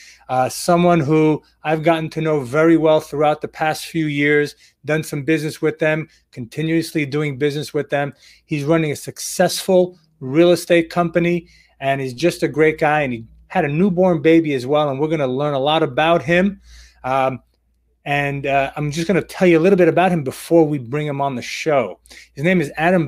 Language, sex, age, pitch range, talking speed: English, male, 30-49, 140-180 Hz, 205 wpm